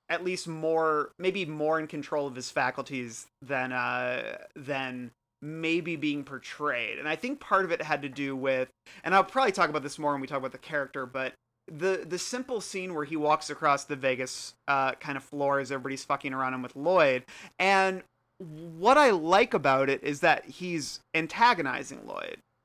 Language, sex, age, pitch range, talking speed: English, male, 30-49, 135-180 Hz, 190 wpm